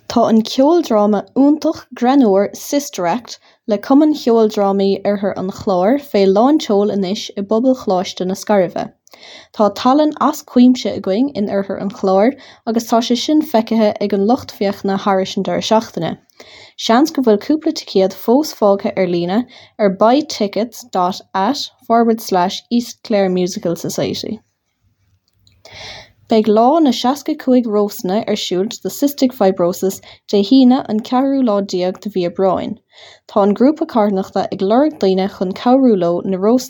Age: 10-29